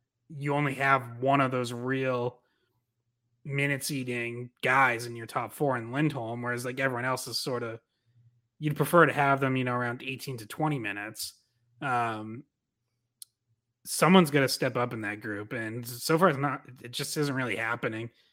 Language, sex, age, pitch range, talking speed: English, male, 30-49, 120-140 Hz, 175 wpm